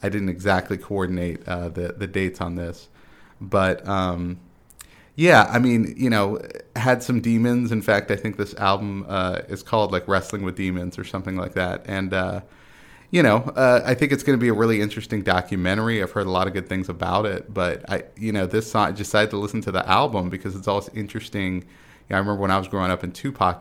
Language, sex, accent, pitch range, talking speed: English, male, American, 95-110 Hz, 225 wpm